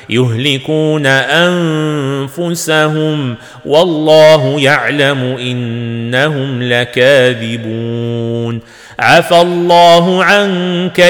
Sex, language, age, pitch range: male, Arabic, 40-59, 130-165 Hz